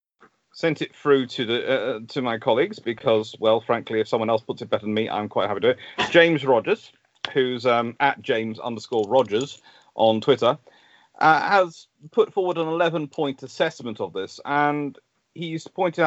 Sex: male